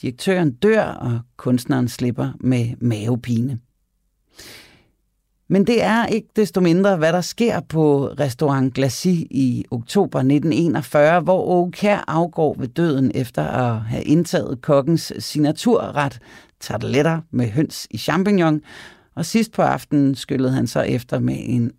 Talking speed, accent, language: 130 wpm, native, Danish